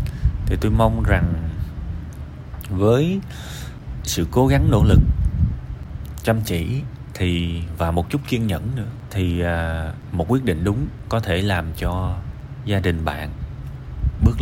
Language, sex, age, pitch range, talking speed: Vietnamese, male, 20-39, 80-110 Hz, 135 wpm